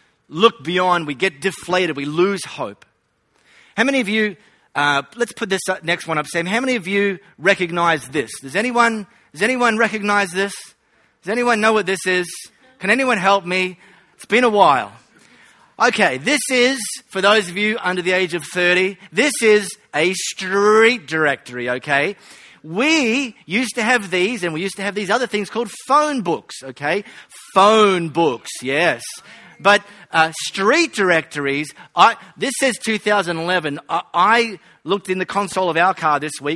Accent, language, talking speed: Australian, English, 170 wpm